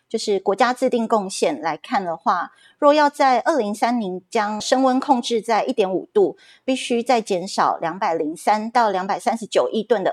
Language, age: Chinese, 30-49